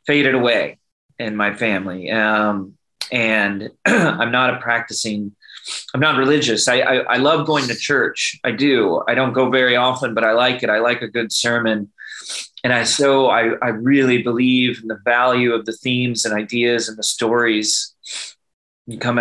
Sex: male